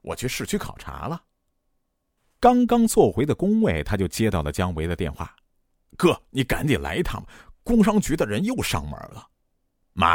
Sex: male